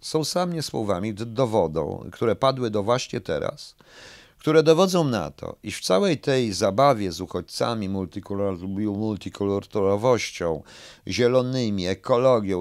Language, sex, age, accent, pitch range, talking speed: Polish, male, 40-59, native, 100-135 Hz, 110 wpm